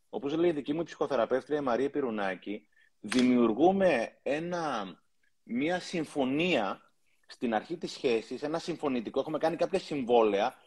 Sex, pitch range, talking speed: male, 125-195 Hz, 125 wpm